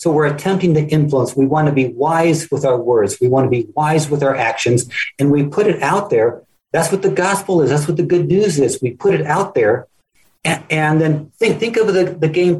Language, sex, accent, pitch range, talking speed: English, male, American, 135-180 Hz, 250 wpm